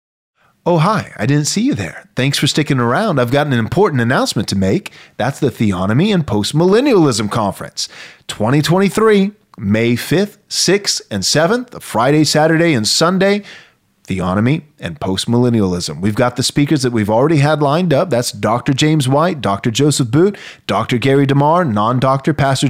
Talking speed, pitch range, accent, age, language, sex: 155 wpm, 115-160 Hz, American, 30-49, English, male